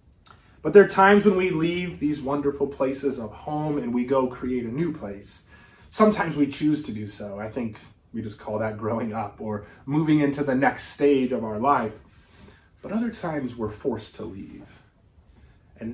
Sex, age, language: male, 30-49, English